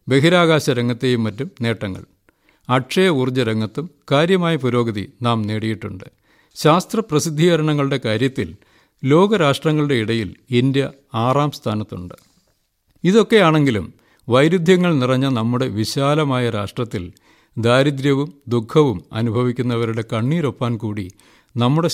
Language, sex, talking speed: Malayalam, male, 85 wpm